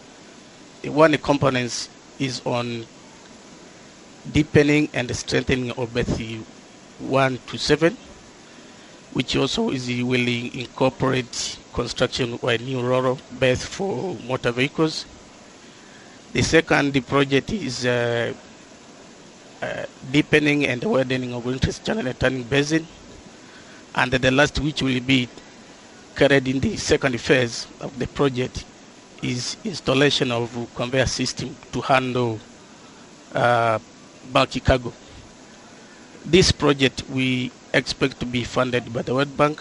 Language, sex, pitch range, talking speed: English, male, 120-140 Hz, 115 wpm